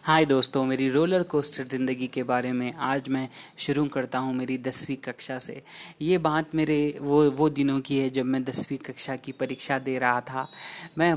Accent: native